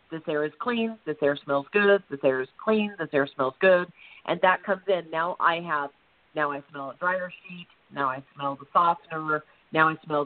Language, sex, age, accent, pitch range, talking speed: English, female, 40-59, American, 170-240 Hz, 215 wpm